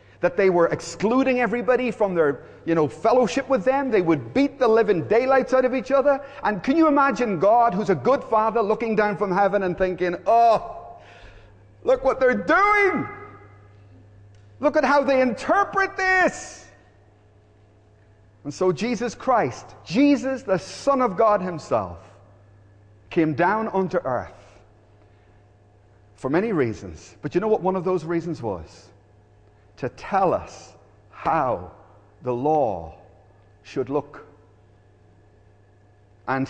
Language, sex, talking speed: English, male, 135 wpm